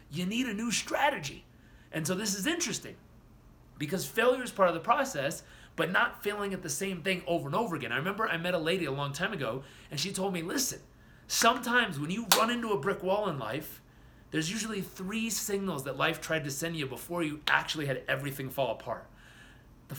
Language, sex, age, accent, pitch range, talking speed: English, male, 30-49, American, 135-190 Hz, 215 wpm